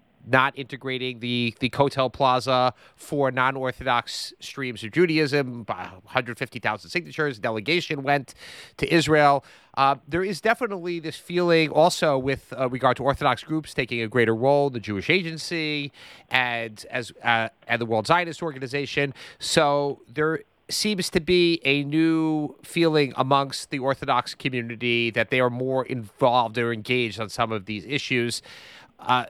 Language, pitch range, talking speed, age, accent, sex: English, 120-150 Hz, 145 wpm, 30-49, American, male